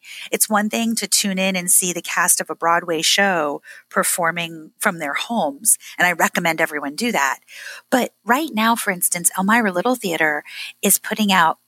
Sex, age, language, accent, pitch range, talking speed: female, 30-49, English, American, 165-210 Hz, 180 wpm